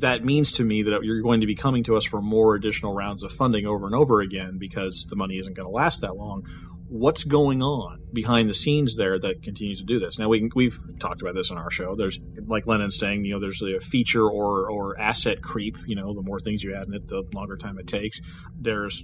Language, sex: English, male